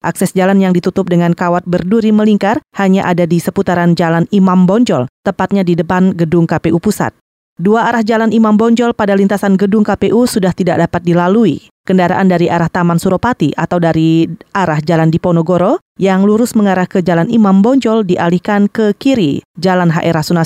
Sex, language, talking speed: female, Indonesian, 165 wpm